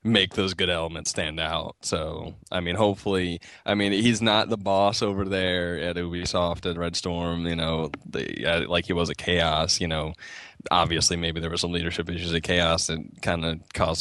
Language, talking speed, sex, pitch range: English, 200 wpm, male, 85-100 Hz